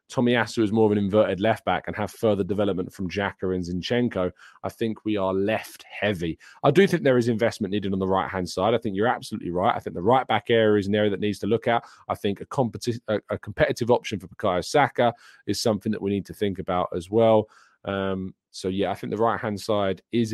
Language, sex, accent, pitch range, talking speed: English, male, British, 95-120 Hz, 235 wpm